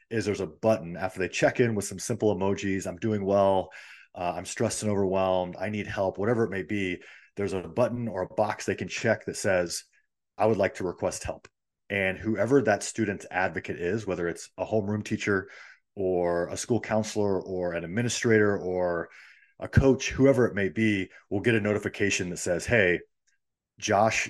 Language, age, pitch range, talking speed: English, 30-49, 95-115 Hz, 190 wpm